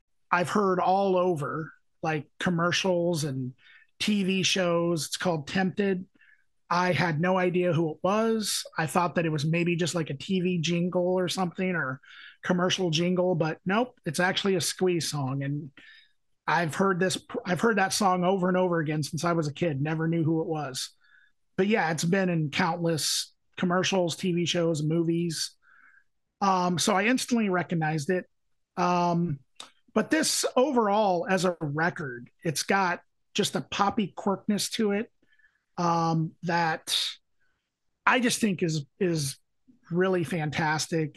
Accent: American